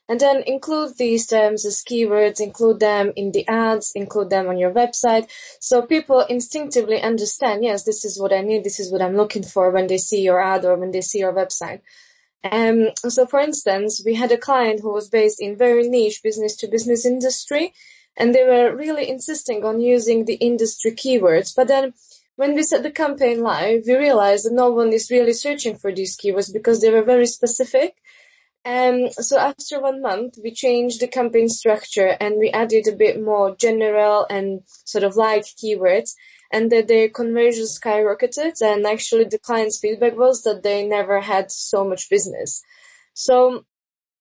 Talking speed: 190 wpm